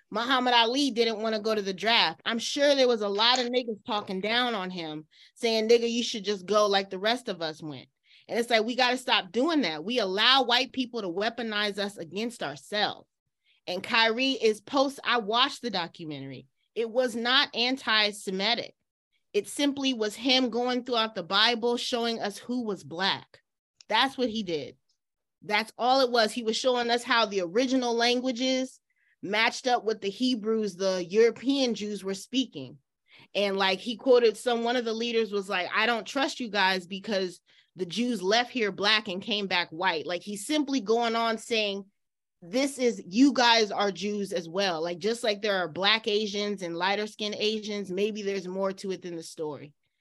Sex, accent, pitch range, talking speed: female, American, 195-240 Hz, 195 wpm